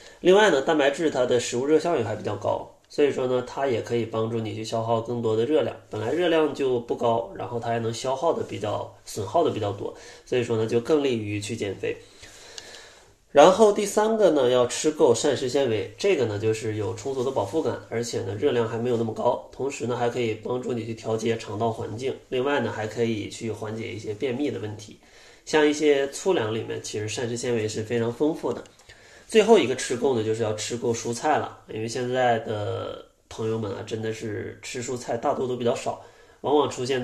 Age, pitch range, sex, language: 20-39, 110-140 Hz, male, Chinese